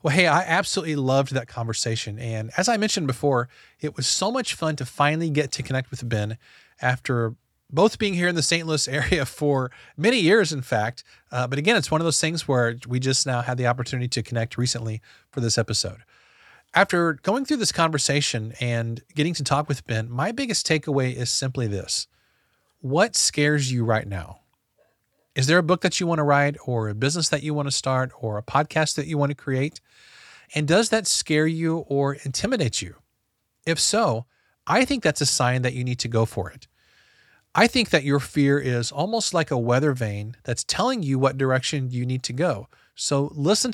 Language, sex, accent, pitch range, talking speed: English, male, American, 120-165 Hz, 205 wpm